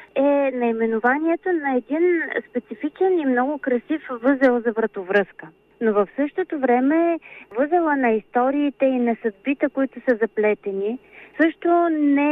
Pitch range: 225-295 Hz